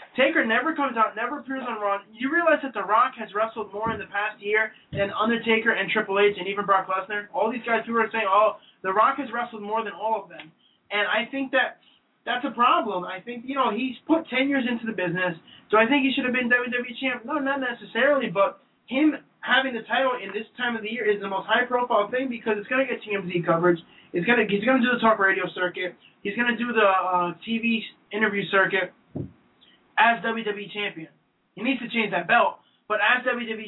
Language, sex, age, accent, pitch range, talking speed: English, male, 20-39, American, 195-245 Hz, 225 wpm